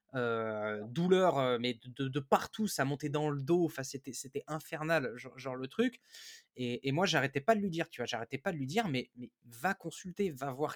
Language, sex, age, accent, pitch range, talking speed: French, male, 20-39, French, 140-205 Hz, 225 wpm